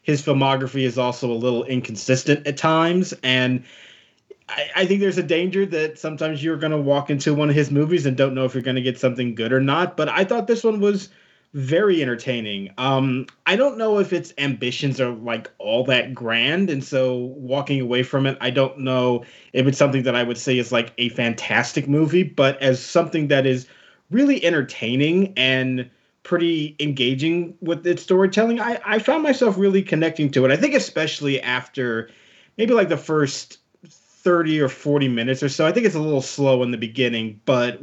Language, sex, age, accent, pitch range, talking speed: English, male, 20-39, American, 130-170 Hz, 200 wpm